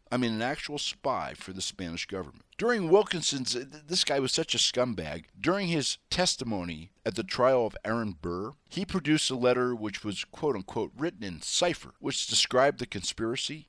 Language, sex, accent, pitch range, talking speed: English, male, American, 95-140 Hz, 175 wpm